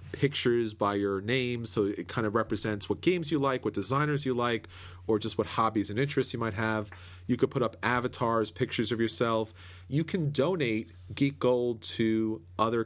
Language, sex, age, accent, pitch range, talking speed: English, male, 40-59, American, 105-125 Hz, 190 wpm